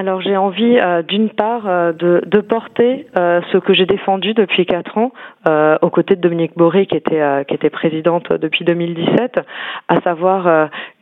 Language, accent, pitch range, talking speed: French, French, 165-195 Hz, 180 wpm